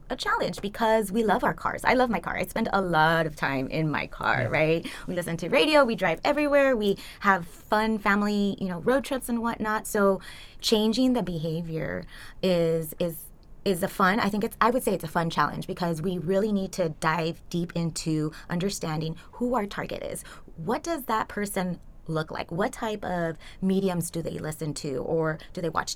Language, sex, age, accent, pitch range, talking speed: English, female, 20-39, American, 155-195 Hz, 200 wpm